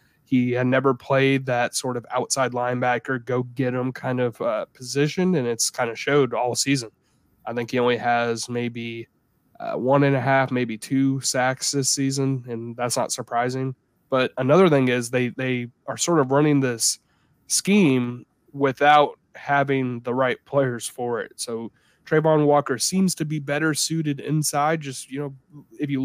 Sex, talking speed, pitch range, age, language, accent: male, 175 wpm, 125-145 Hz, 20-39, English, American